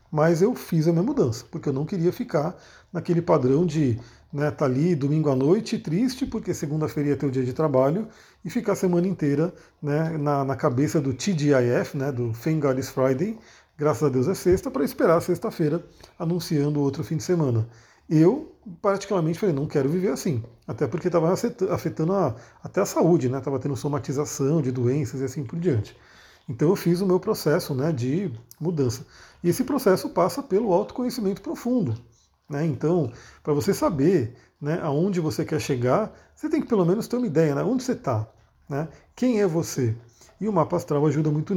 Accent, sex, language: Brazilian, male, Portuguese